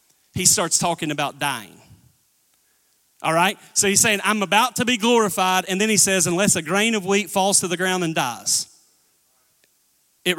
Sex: male